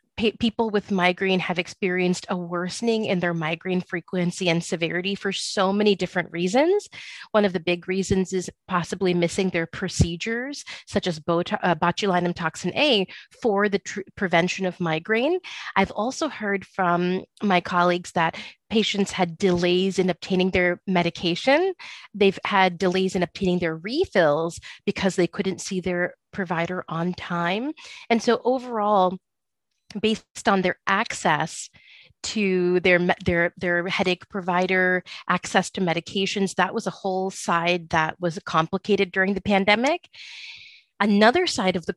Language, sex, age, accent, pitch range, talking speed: English, female, 30-49, American, 175-205 Hz, 140 wpm